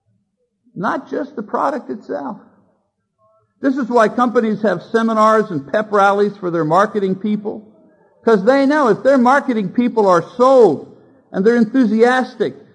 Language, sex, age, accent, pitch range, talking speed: English, male, 50-69, American, 195-255 Hz, 140 wpm